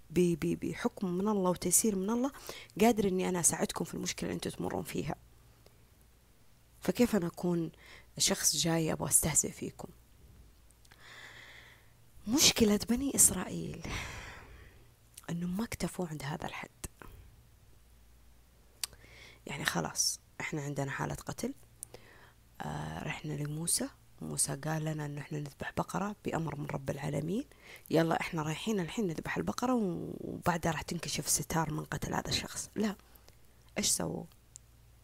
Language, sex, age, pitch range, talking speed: Arabic, female, 20-39, 145-195 Hz, 125 wpm